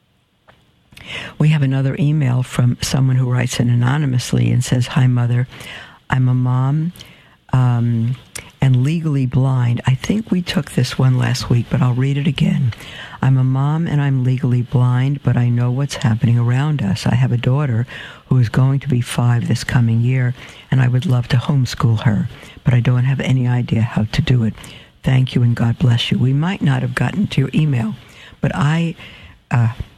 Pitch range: 125-145 Hz